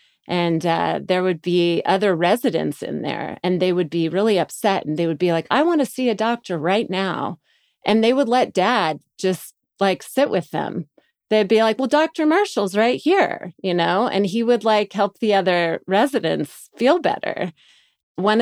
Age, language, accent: 30-49, English, American